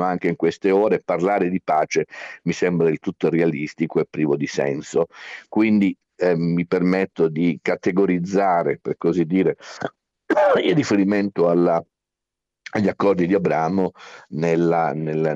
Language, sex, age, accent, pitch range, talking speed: Italian, male, 50-69, native, 80-95 Hz, 135 wpm